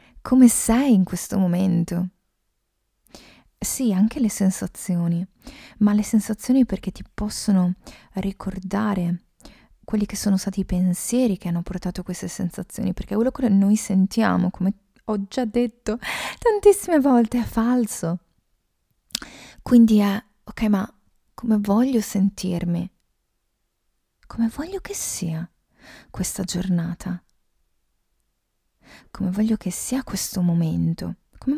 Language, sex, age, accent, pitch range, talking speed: Italian, female, 20-39, native, 180-215 Hz, 115 wpm